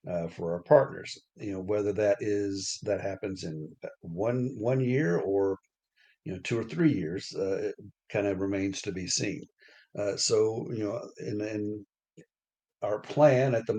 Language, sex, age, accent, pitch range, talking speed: English, male, 60-79, American, 100-115 Hz, 175 wpm